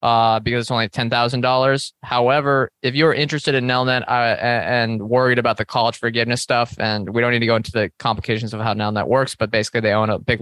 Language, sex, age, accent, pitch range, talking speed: English, male, 20-39, American, 110-125 Hz, 220 wpm